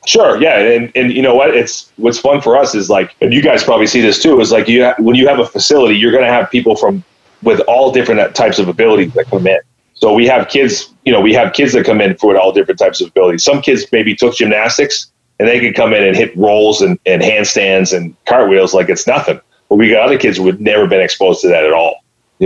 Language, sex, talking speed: English, male, 265 wpm